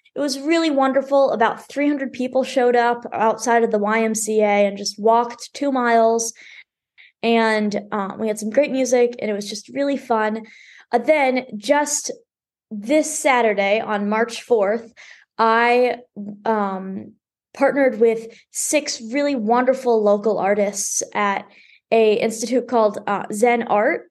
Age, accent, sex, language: 20-39, American, female, English